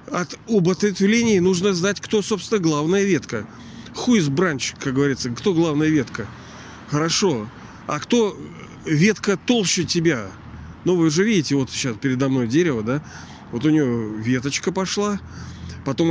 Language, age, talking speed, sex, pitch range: Russian, 40-59, 140 wpm, male, 125-165 Hz